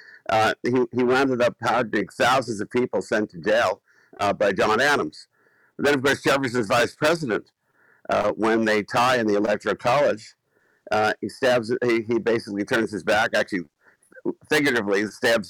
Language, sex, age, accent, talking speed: English, male, 60-79, American, 165 wpm